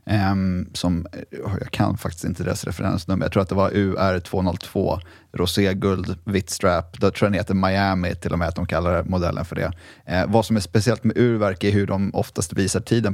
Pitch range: 95-105 Hz